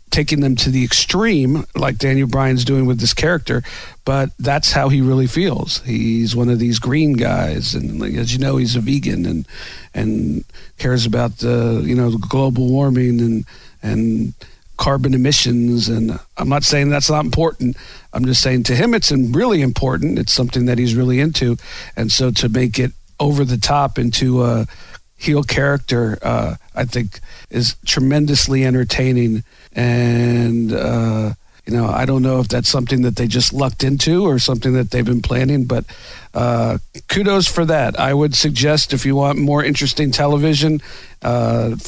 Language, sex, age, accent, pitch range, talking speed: English, male, 50-69, American, 120-140 Hz, 170 wpm